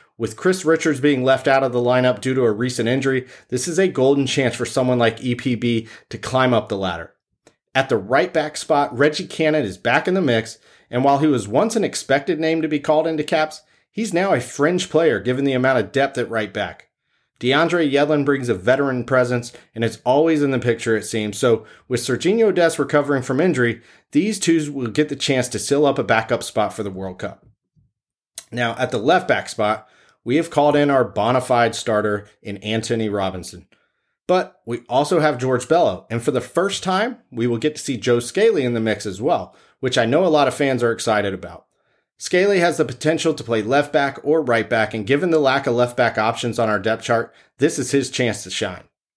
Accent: American